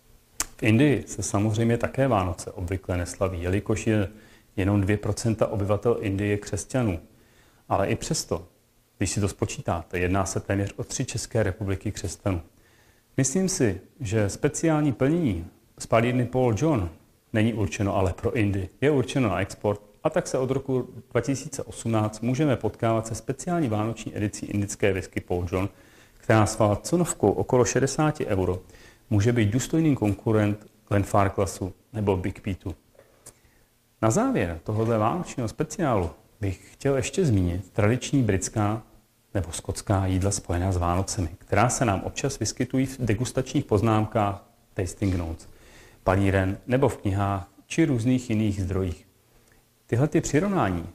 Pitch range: 100-120 Hz